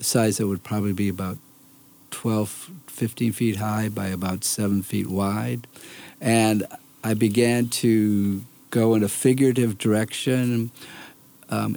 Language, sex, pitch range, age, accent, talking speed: English, male, 95-115 Hz, 50-69, American, 125 wpm